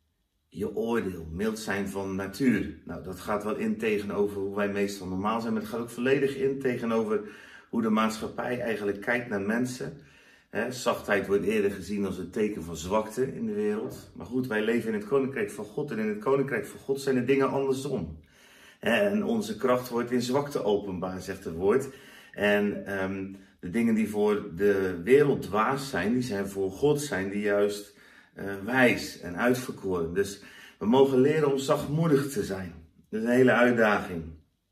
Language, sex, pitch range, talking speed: Dutch, male, 95-135 Hz, 185 wpm